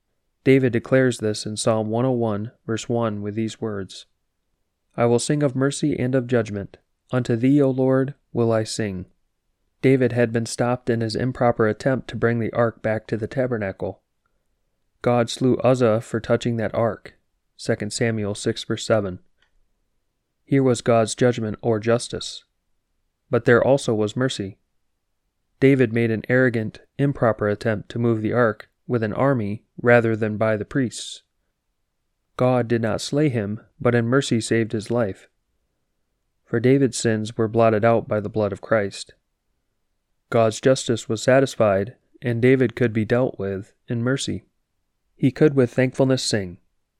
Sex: male